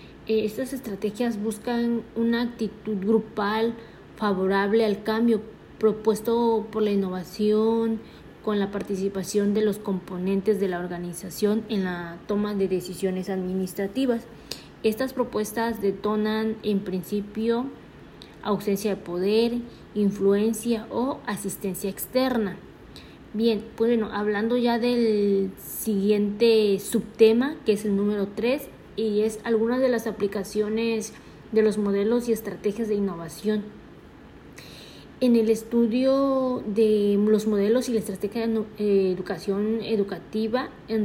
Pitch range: 200-225 Hz